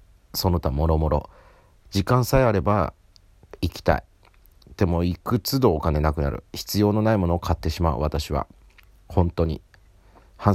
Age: 40-59